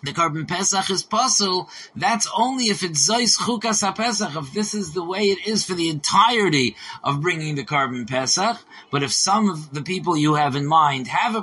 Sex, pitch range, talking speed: male, 155-200 Hz, 205 wpm